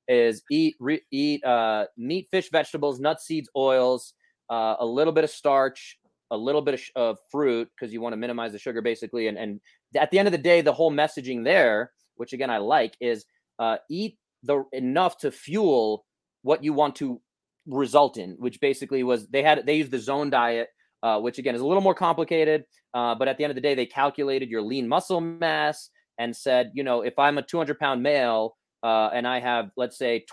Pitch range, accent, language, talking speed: 120-160 Hz, American, English, 215 wpm